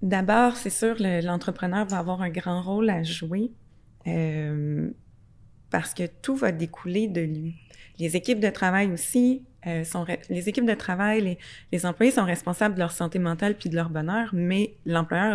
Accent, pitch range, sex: Canadian, 165-195 Hz, female